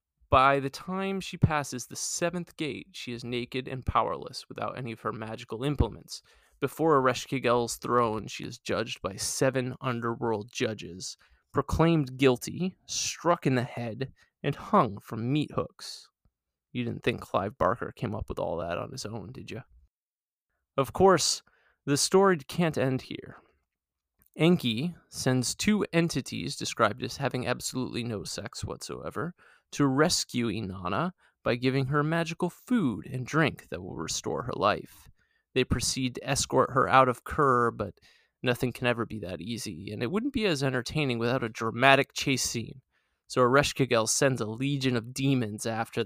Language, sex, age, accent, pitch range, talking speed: English, male, 20-39, American, 115-140 Hz, 160 wpm